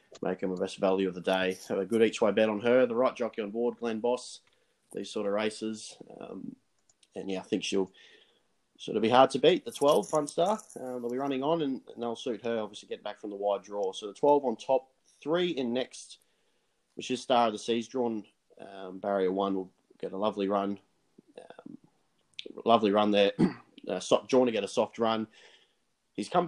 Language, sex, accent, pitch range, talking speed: English, male, Australian, 100-120 Hz, 220 wpm